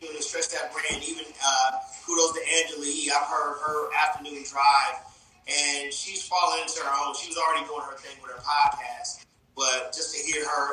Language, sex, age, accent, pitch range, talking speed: English, male, 30-49, American, 125-175 Hz, 190 wpm